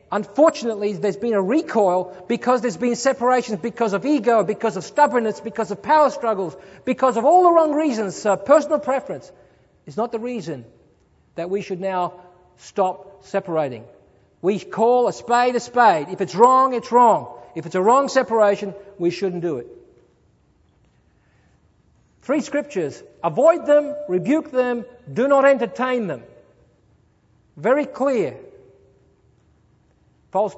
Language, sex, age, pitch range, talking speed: English, male, 50-69, 195-255 Hz, 140 wpm